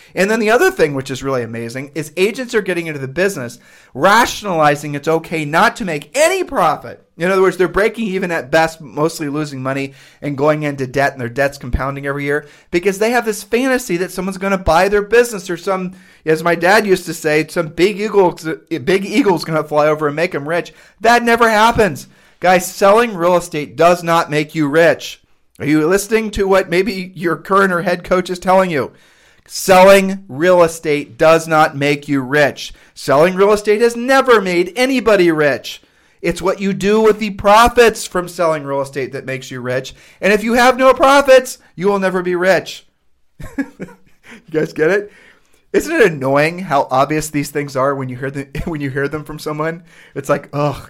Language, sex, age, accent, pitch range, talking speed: English, male, 40-59, American, 145-195 Hz, 200 wpm